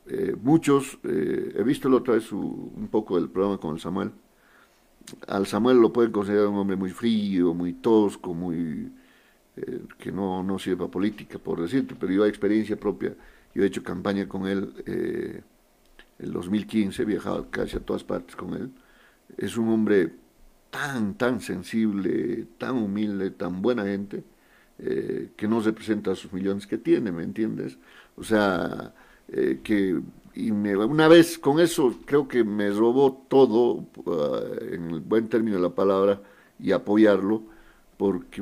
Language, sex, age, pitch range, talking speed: Spanish, male, 50-69, 95-110 Hz, 165 wpm